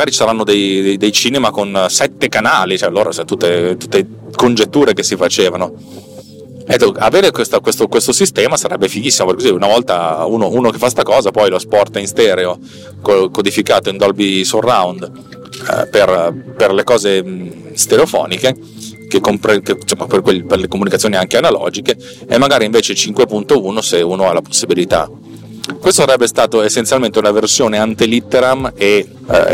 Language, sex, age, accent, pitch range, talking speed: Italian, male, 30-49, native, 90-120 Hz, 165 wpm